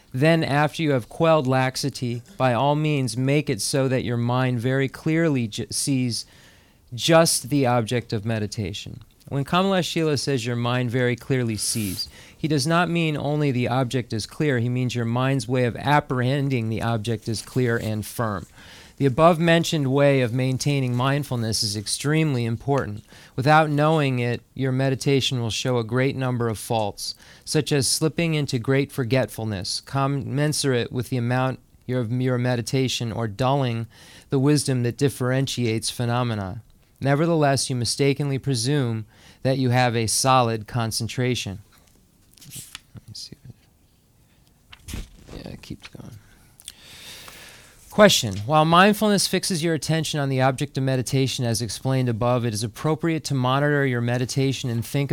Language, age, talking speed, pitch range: English, 40-59, 145 wpm, 115-145 Hz